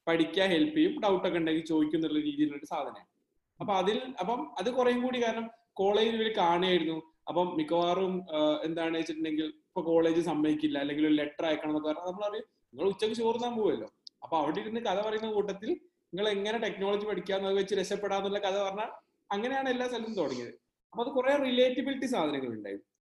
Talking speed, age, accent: 160 wpm, 30-49, native